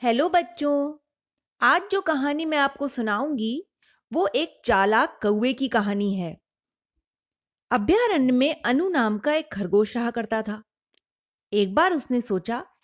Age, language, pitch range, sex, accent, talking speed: 30-49, Hindi, 215-300 Hz, female, native, 135 wpm